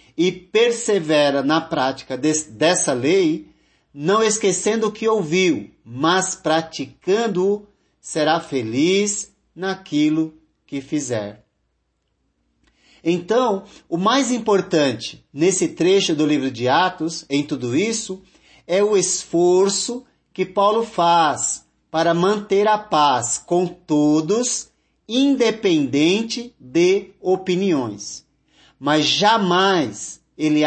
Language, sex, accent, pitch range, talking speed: Portuguese, male, Brazilian, 155-210 Hz, 95 wpm